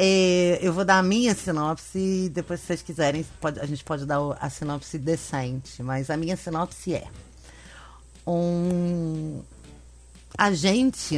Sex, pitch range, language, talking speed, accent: female, 145-190 Hz, Portuguese, 135 wpm, Brazilian